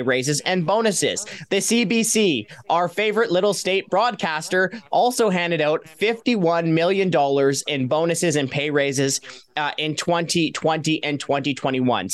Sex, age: male, 20-39